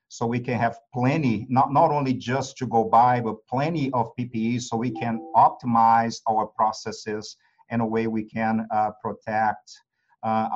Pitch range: 115-135 Hz